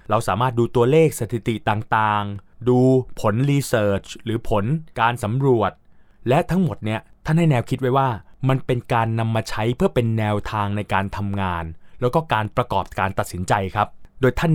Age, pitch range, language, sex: 20-39, 105-135 Hz, Thai, male